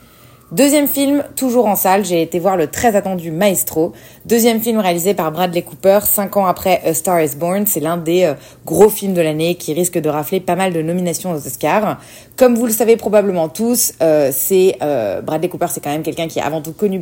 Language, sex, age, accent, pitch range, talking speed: French, female, 30-49, French, 165-215 Hz, 220 wpm